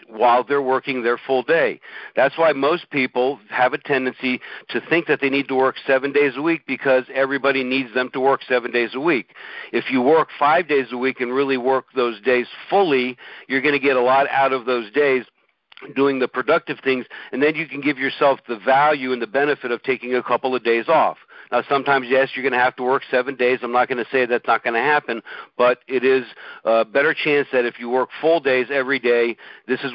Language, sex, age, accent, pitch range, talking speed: English, male, 50-69, American, 125-140 Hz, 230 wpm